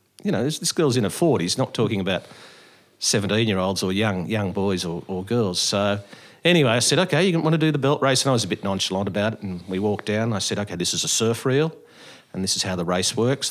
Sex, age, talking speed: male, 50-69, 260 wpm